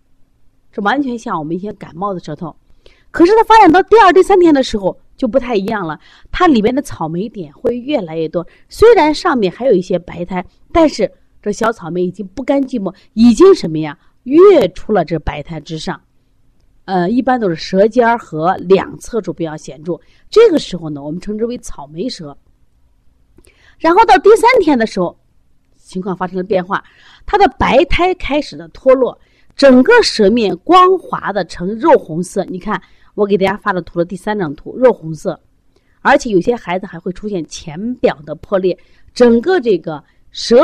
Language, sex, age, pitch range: Chinese, female, 30-49, 175-270 Hz